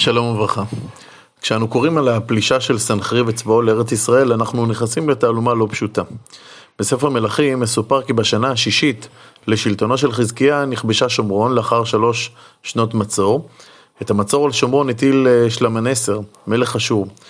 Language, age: Hebrew, 30-49